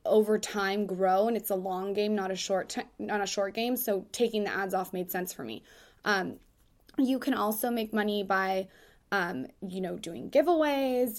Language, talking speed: English, 195 wpm